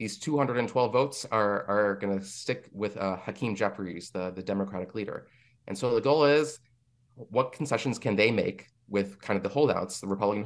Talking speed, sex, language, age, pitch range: 190 wpm, male, English, 30-49, 100-120 Hz